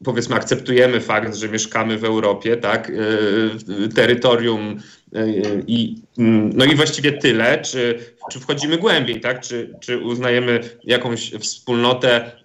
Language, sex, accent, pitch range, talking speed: Polish, male, native, 115-130 Hz, 130 wpm